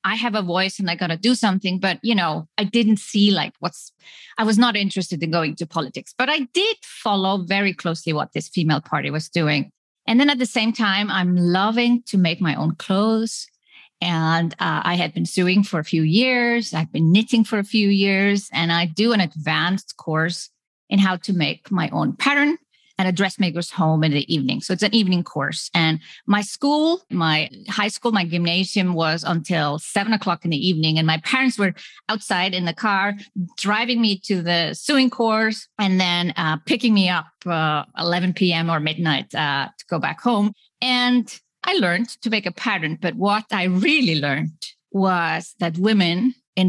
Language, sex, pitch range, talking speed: English, female, 165-215 Hz, 195 wpm